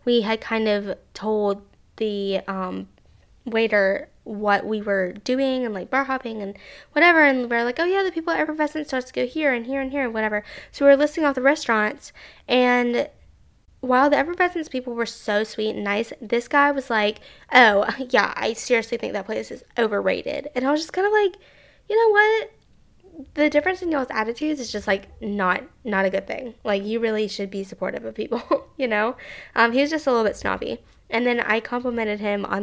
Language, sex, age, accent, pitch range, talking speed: English, female, 10-29, American, 215-275 Hz, 210 wpm